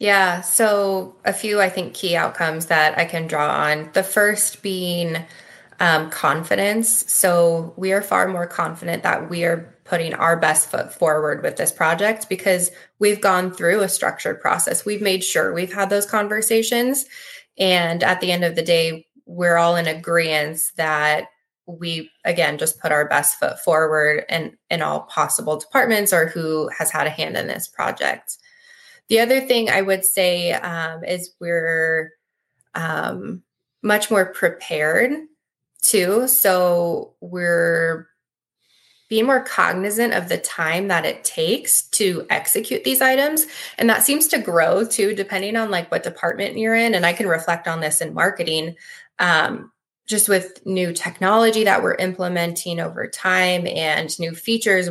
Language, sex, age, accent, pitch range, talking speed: English, female, 20-39, American, 165-210 Hz, 160 wpm